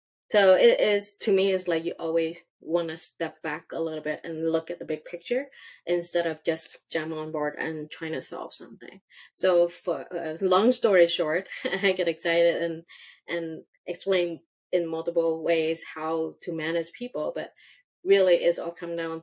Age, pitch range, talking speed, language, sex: 20-39, 165-185 Hz, 180 wpm, English, female